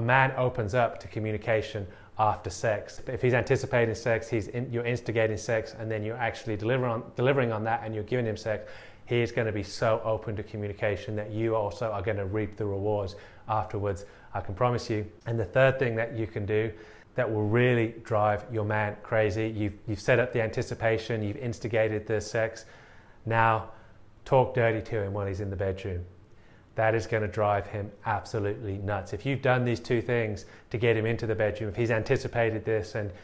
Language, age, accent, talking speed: English, 30-49, British, 205 wpm